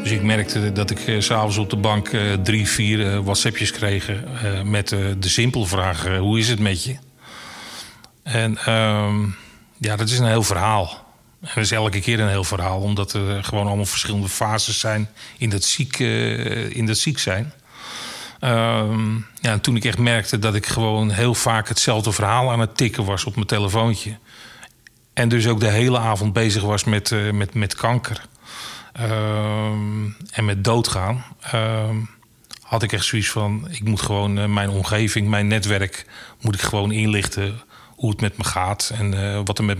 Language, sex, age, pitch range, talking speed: Dutch, male, 40-59, 105-115 Hz, 165 wpm